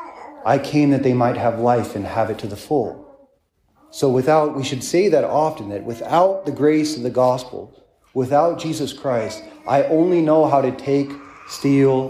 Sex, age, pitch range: male, 40-59, 120-150 Hz